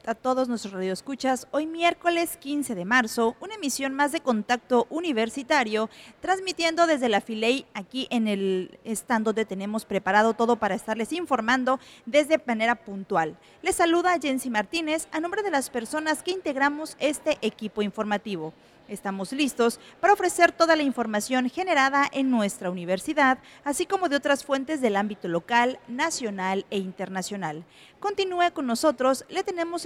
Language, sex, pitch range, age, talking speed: Spanish, female, 220-305 Hz, 40-59, 150 wpm